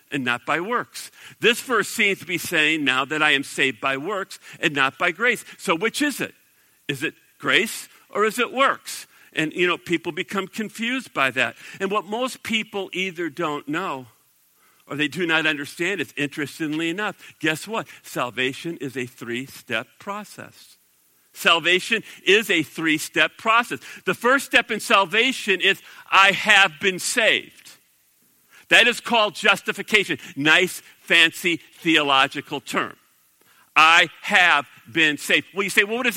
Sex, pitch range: male, 155-215 Hz